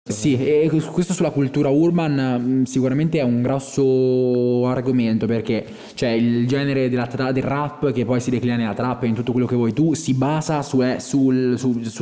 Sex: male